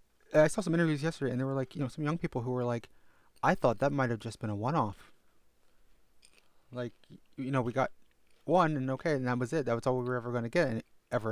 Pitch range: 115-135 Hz